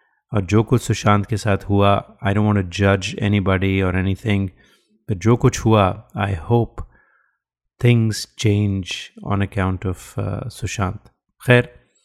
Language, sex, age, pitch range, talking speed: Hindi, male, 30-49, 100-120 Hz, 135 wpm